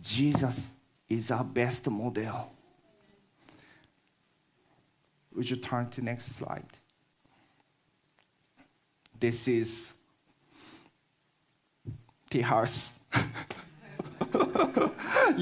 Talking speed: 60 wpm